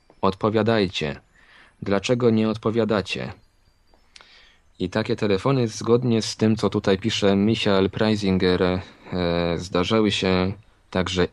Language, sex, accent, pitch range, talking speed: Polish, male, native, 90-110 Hz, 95 wpm